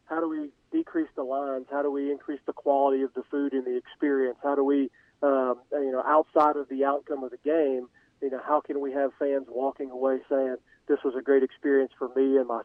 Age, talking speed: 40-59, 235 wpm